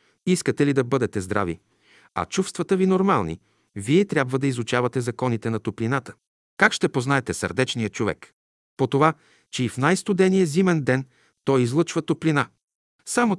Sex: male